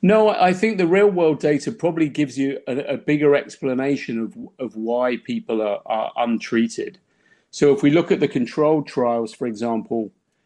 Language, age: English, 40-59